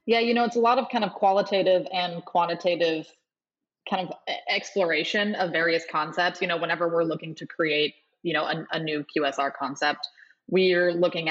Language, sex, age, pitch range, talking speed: English, female, 20-39, 150-175 Hz, 180 wpm